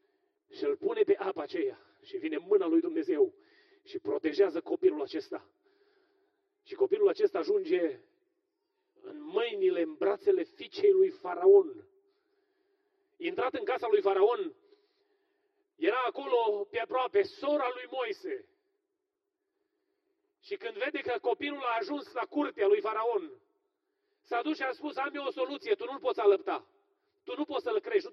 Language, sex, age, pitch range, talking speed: Romanian, male, 30-49, 350-405 Hz, 145 wpm